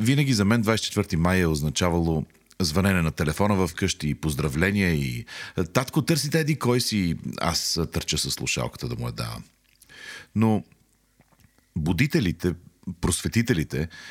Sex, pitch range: male, 80-110 Hz